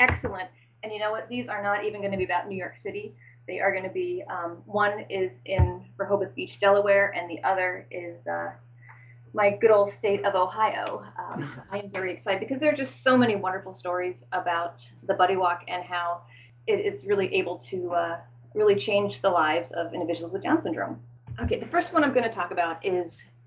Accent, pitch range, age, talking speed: American, 170-215 Hz, 30-49, 210 wpm